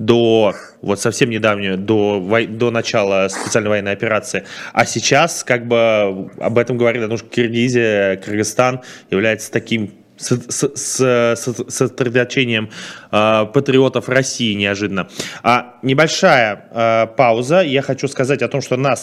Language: Russian